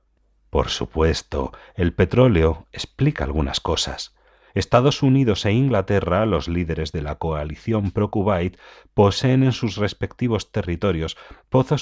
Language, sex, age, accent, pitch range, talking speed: Spanish, male, 40-59, Spanish, 90-120 Hz, 115 wpm